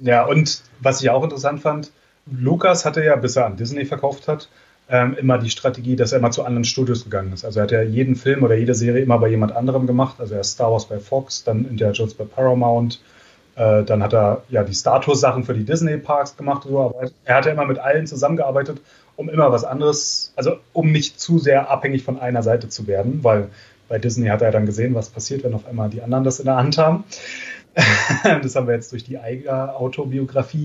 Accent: German